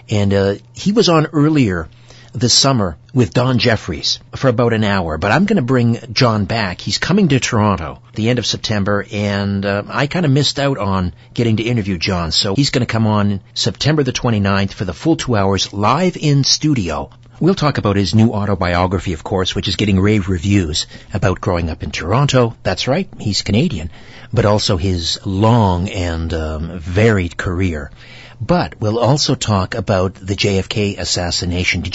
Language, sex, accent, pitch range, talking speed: English, male, American, 95-125 Hz, 185 wpm